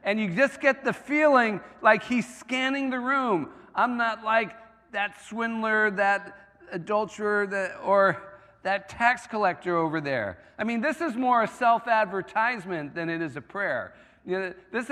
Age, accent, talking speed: 50-69, American, 150 wpm